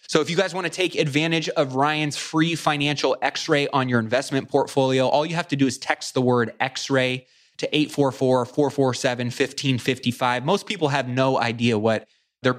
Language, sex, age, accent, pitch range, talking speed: English, male, 20-39, American, 125-150 Hz, 170 wpm